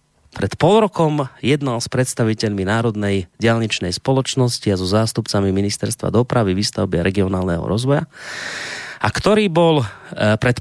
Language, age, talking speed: Slovak, 30-49, 120 wpm